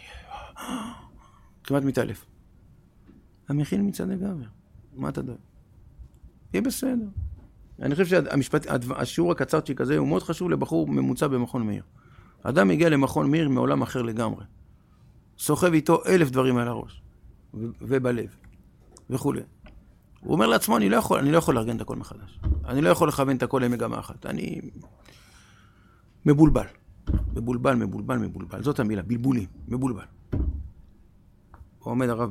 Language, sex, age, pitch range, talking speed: Hebrew, male, 50-69, 95-150 Hz, 130 wpm